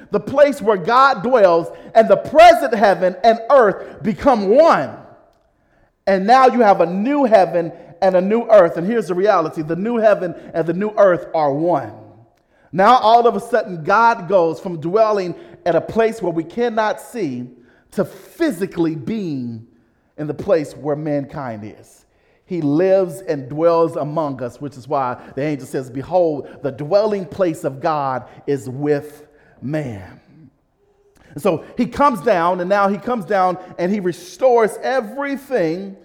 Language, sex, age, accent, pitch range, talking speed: English, male, 40-59, American, 165-230 Hz, 160 wpm